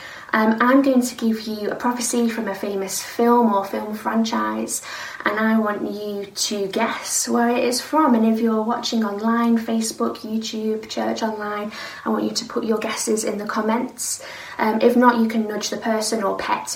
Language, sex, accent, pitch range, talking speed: English, female, British, 205-245 Hz, 195 wpm